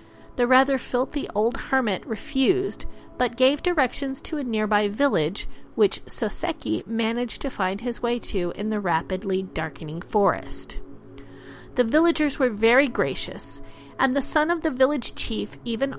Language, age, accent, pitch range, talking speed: English, 40-59, American, 195-265 Hz, 145 wpm